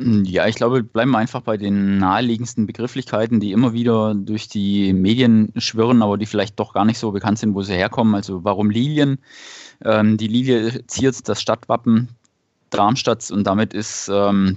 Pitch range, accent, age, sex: 100-120 Hz, German, 20-39, male